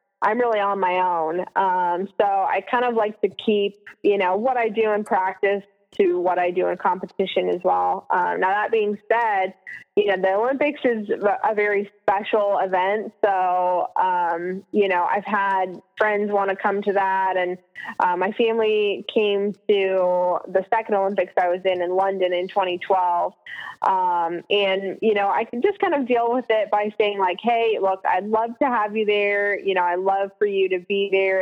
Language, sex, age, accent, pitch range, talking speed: English, female, 20-39, American, 185-225 Hz, 195 wpm